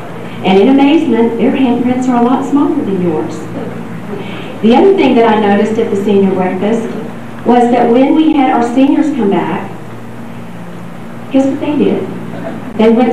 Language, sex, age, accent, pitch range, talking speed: English, female, 40-59, American, 195-245 Hz, 165 wpm